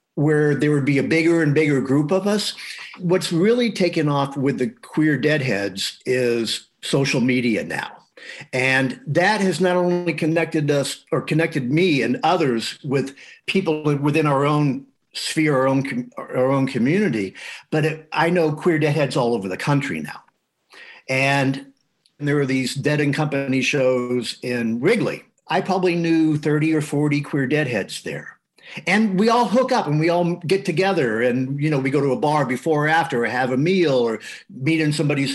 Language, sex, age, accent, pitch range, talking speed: English, male, 50-69, American, 135-165 Hz, 180 wpm